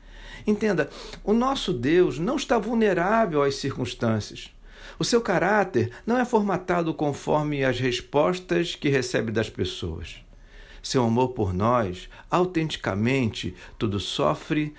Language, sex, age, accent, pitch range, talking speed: Portuguese, male, 60-79, Brazilian, 105-155 Hz, 120 wpm